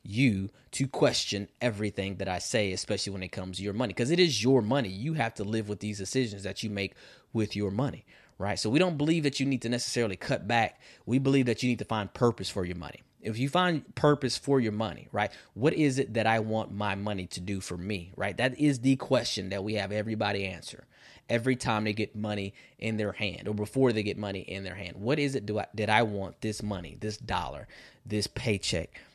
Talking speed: 235 wpm